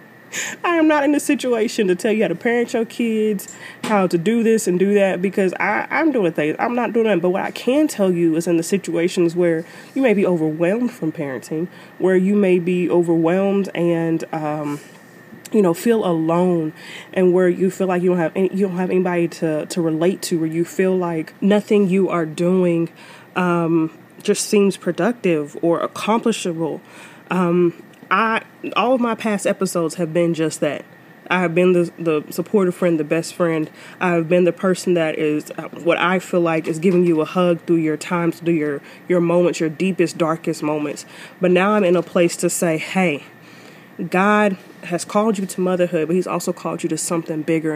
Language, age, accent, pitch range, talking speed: English, 20-39, American, 165-195 Hz, 200 wpm